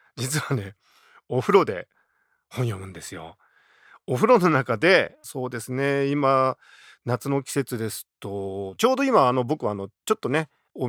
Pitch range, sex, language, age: 115-180 Hz, male, Japanese, 40-59